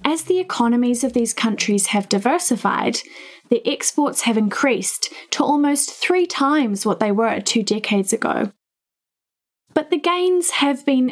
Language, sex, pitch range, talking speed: English, female, 225-290 Hz, 145 wpm